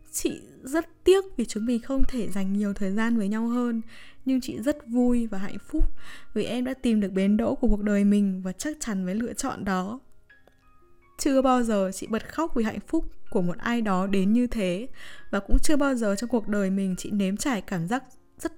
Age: 10-29